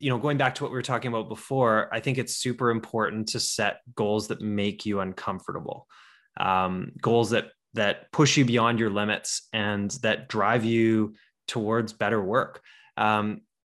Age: 20-39